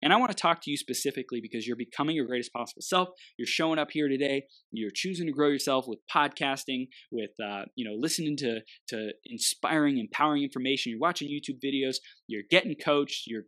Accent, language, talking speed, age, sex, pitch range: American, English, 200 wpm, 20-39, male, 120-160 Hz